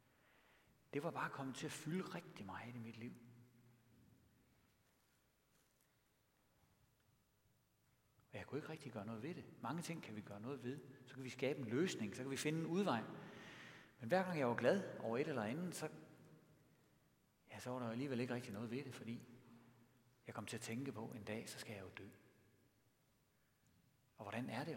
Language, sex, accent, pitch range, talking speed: Danish, male, native, 115-145 Hz, 195 wpm